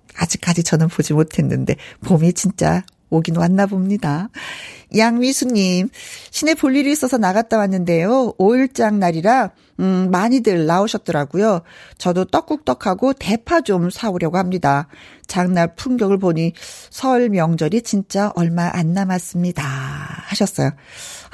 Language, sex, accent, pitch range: Korean, female, native, 175-270 Hz